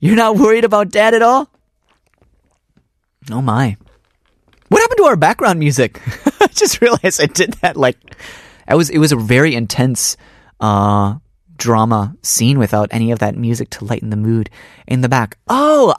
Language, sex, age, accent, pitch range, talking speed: English, male, 30-49, American, 115-180 Hz, 170 wpm